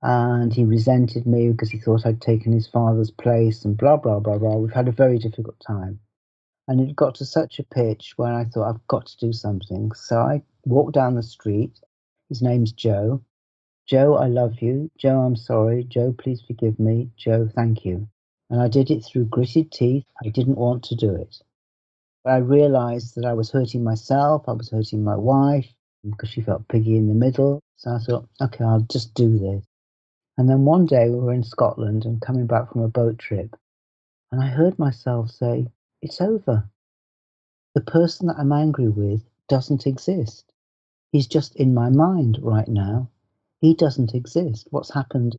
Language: English